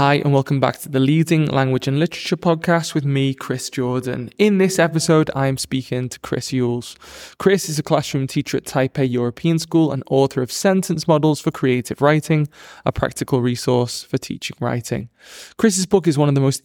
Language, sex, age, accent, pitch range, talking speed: English, male, 20-39, British, 130-155 Hz, 195 wpm